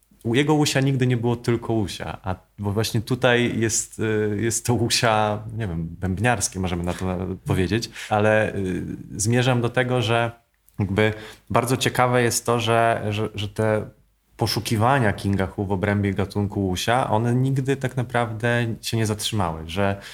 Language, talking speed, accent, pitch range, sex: Polish, 155 wpm, native, 100-120 Hz, male